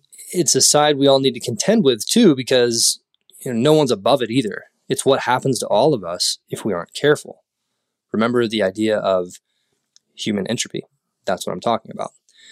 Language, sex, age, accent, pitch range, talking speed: English, male, 20-39, American, 115-145 Hz, 190 wpm